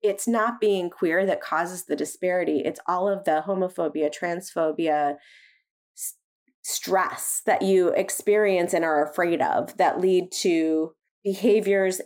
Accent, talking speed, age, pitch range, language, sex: American, 130 wpm, 30-49, 160-200 Hz, English, female